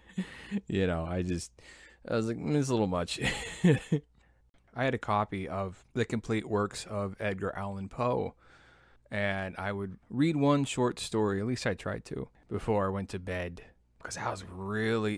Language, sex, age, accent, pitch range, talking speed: English, male, 20-39, American, 95-110 Hz, 180 wpm